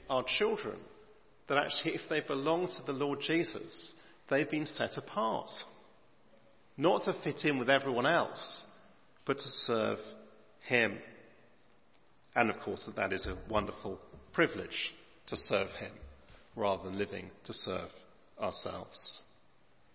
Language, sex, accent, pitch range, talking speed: English, male, British, 120-155 Hz, 130 wpm